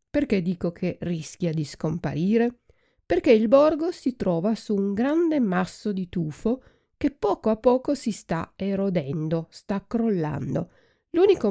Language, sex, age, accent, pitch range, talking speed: Italian, female, 50-69, native, 175-245 Hz, 140 wpm